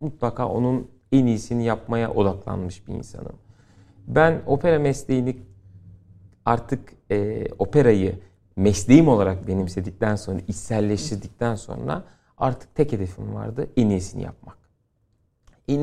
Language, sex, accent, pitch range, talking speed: Turkish, male, native, 100-130 Hz, 105 wpm